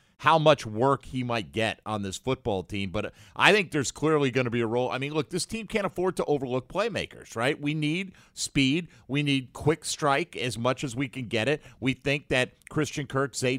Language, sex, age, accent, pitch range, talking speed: English, male, 50-69, American, 130-170 Hz, 225 wpm